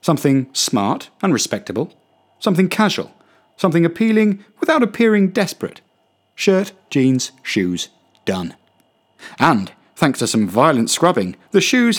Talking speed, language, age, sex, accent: 115 wpm, English, 40-59, male, British